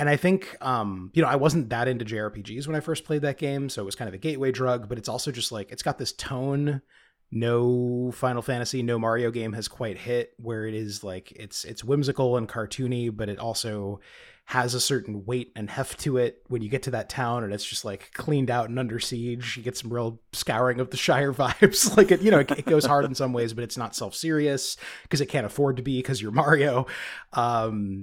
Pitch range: 105-135 Hz